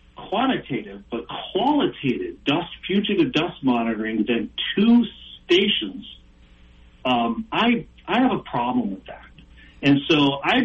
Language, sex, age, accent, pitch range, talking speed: English, male, 50-69, American, 115-185 Hz, 120 wpm